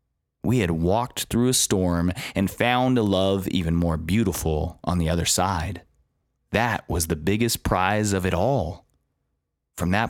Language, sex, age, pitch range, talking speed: English, male, 30-49, 90-115 Hz, 160 wpm